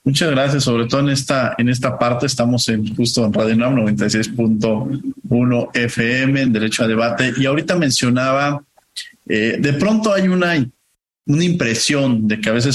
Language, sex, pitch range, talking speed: Spanish, male, 115-140 Hz, 165 wpm